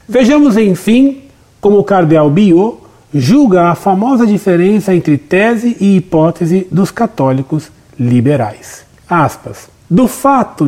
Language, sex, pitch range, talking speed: Portuguese, male, 145-210 Hz, 110 wpm